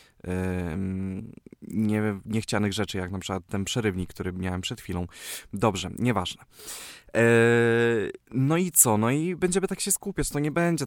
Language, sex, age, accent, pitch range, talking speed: Polish, male, 20-39, native, 105-135 Hz, 140 wpm